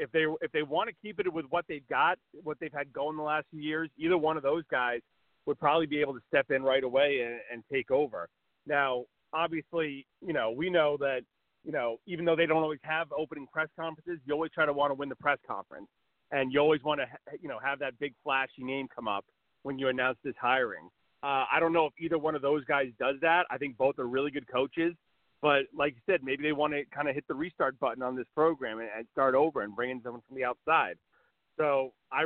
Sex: male